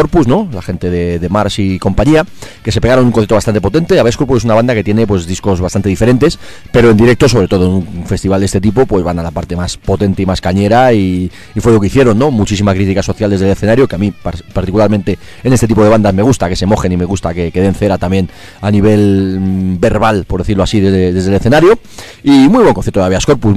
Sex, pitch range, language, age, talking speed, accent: male, 100-125 Hz, Spanish, 30-49, 250 wpm, Spanish